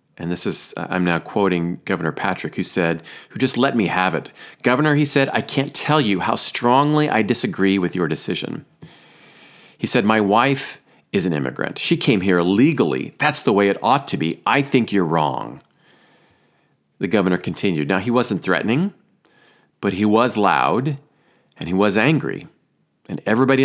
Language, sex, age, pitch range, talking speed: English, male, 40-59, 90-130 Hz, 175 wpm